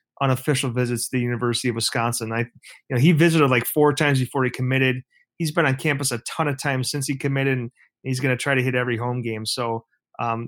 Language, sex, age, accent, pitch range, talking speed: English, male, 30-49, American, 120-135 Hz, 230 wpm